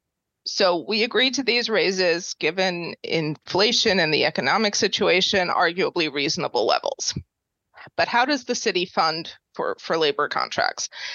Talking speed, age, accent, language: 135 wpm, 30-49, American, English